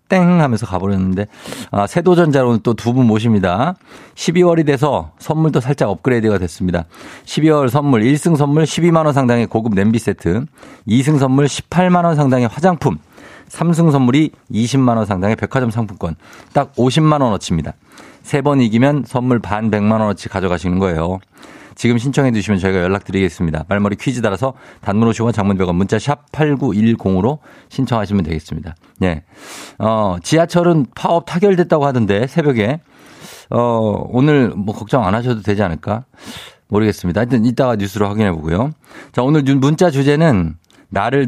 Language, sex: Korean, male